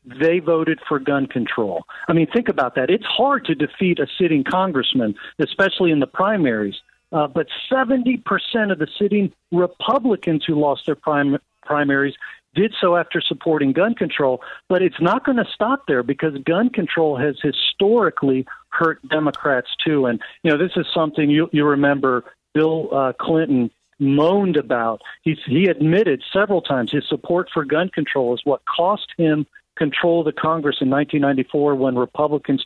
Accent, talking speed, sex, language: American, 165 wpm, male, English